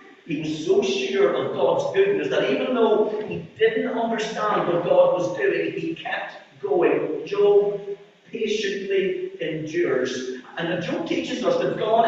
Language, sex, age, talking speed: English, male, 40-59, 145 wpm